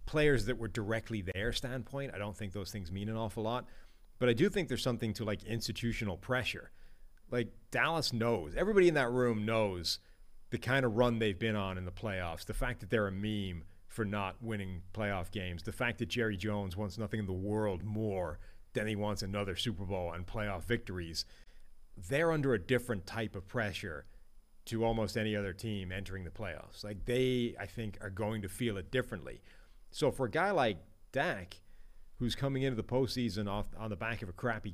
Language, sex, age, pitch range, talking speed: English, male, 40-59, 95-120 Hz, 200 wpm